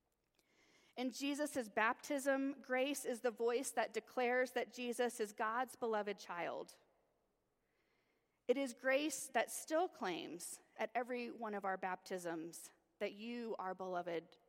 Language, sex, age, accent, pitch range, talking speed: English, female, 30-49, American, 220-260 Hz, 130 wpm